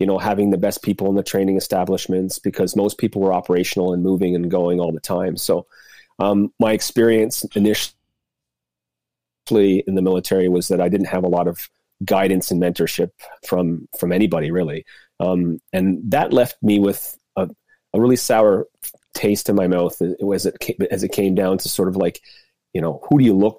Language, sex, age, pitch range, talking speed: English, male, 30-49, 90-100 Hz, 195 wpm